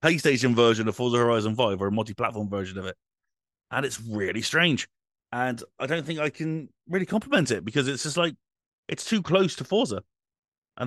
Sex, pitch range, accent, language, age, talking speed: male, 105-150 Hz, British, English, 30-49, 195 wpm